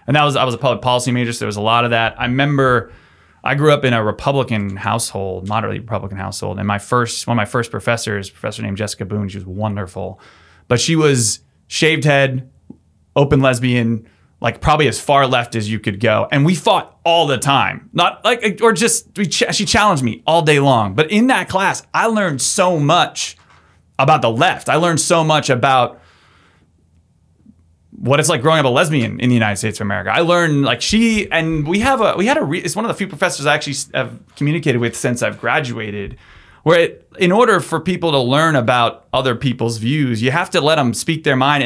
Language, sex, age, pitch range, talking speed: English, male, 30-49, 110-155 Hz, 220 wpm